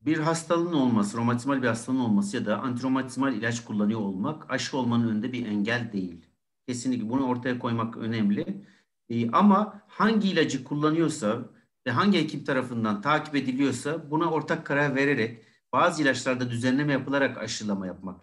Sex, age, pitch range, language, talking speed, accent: male, 60-79, 120-165 Hz, Turkish, 150 wpm, native